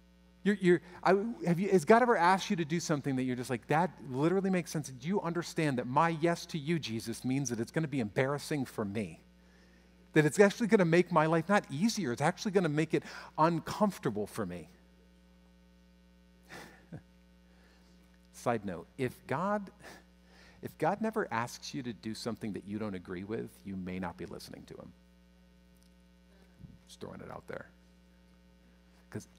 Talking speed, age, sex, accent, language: 165 wpm, 50-69, male, American, English